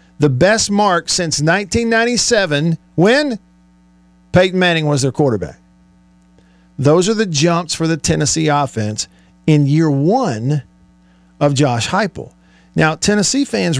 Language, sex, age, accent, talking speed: English, male, 50-69, American, 120 wpm